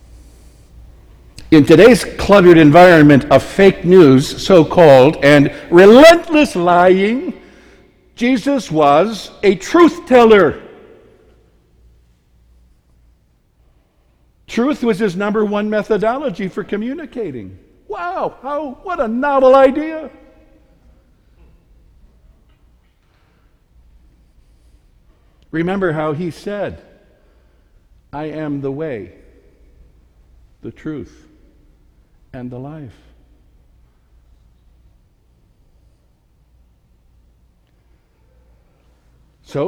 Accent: American